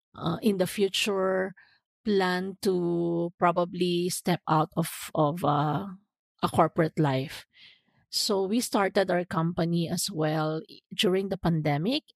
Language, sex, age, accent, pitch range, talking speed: English, female, 40-59, Filipino, 165-210 Hz, 125 wpm